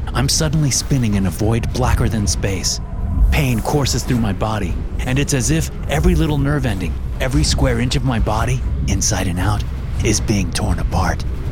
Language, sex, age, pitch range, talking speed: English, male, 30-49, 95-120 Hz, 180 wpm